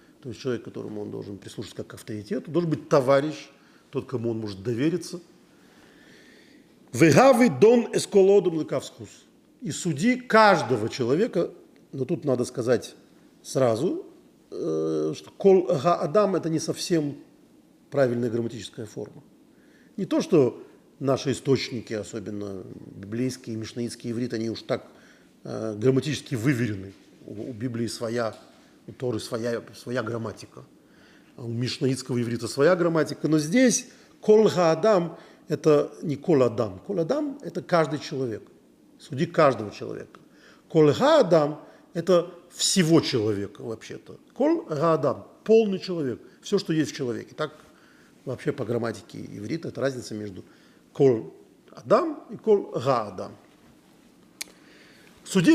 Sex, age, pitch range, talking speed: male, 40-59, 120-180 Hz, 120 wpm